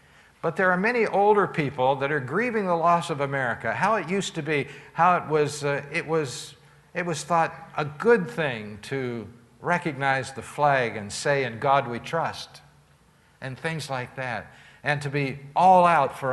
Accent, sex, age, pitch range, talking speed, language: American, male, 60-79, 130-175 Hz, 185 wpm, English